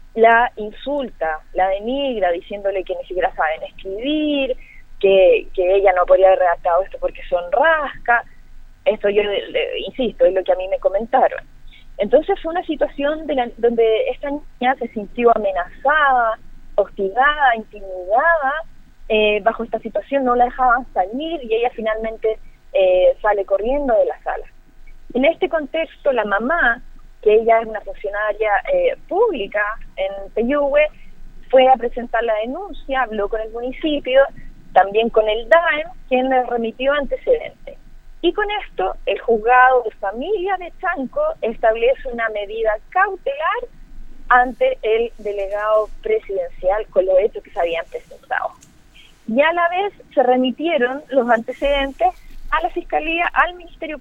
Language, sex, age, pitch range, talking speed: Spanish, female, 20-39, 215-295 Hz, 145 wpm